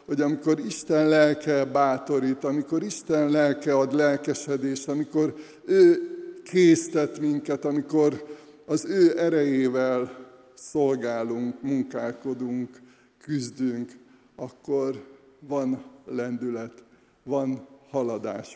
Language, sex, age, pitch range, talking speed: Hungarian, male, 60-79, 130-150 Hz, 85 wpm